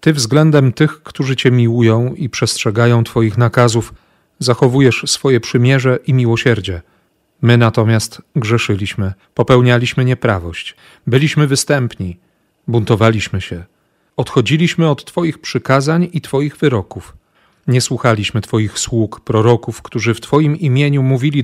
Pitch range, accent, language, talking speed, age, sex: 115-140 Hz, native, Polish, 115 wpm, 40-59, male